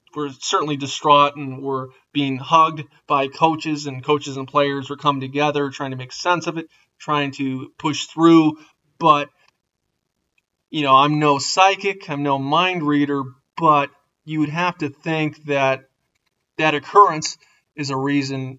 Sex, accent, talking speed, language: male, American, 155 wpm, English